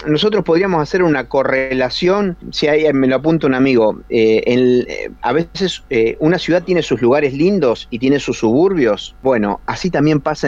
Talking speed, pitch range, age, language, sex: 190 wpm, 115-165 Hz, 30-49, Spanish, male